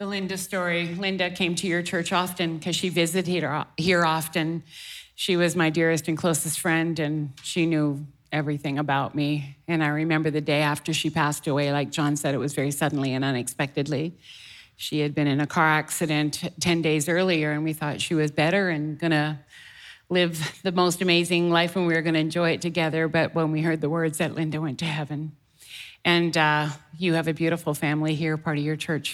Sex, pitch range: female, 150-175 Hz